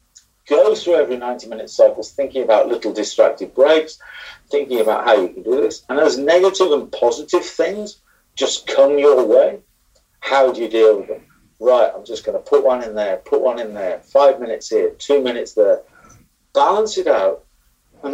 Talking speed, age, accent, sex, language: 185 wpm, 50-69, British, male, English